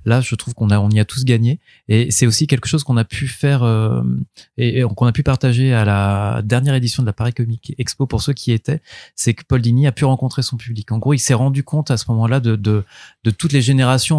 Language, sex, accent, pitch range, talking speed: French, male, French, 110-135 Hz, 270 wpm